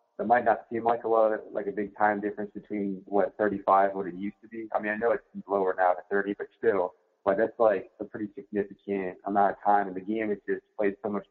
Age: 30-49